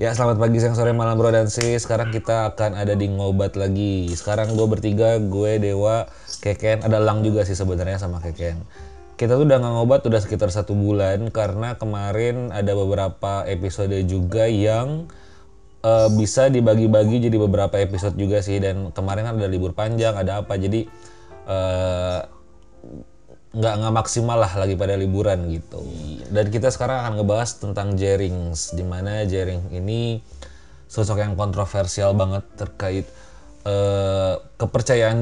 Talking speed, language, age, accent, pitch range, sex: 150 wpm, Indonesian, 20-39, native, 95-110 Hz, male